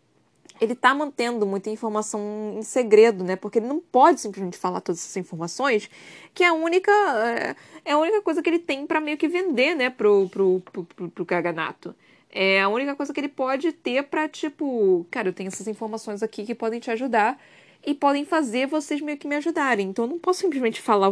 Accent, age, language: Brazilian, 20-39, Portuguese